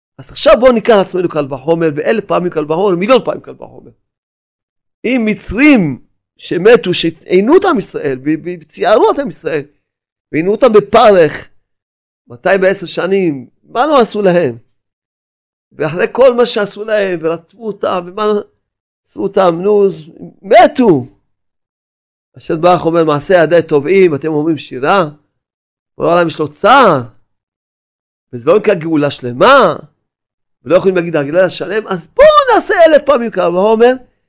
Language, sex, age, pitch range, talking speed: Hebrew, male, 40-59, 135-195 Hz, 135 wpm